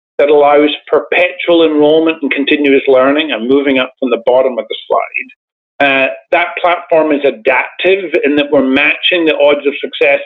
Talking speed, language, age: 170 wpm, English, 50-69